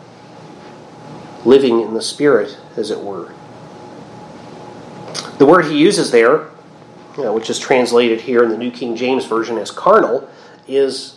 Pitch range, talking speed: 125-155 Hz, 135 wpm